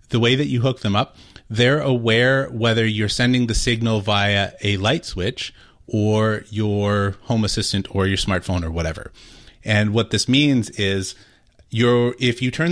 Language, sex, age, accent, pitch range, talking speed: English, male, 30-49, American, 100-120 Hz, 170 wpm